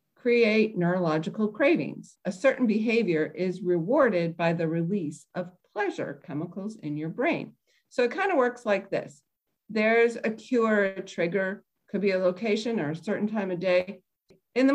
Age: 50-69